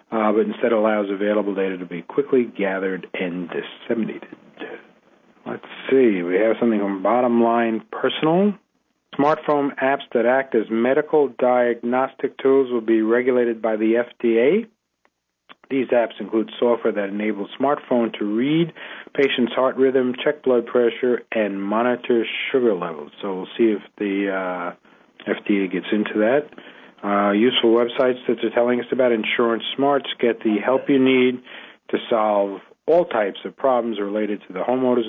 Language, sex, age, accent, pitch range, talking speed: English, male, 50-69, American, 105-125 Hz, 150 wpm